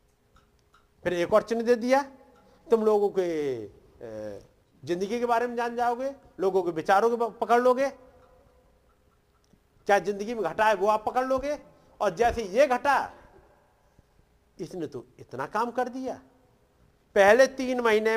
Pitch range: 145-235 Hz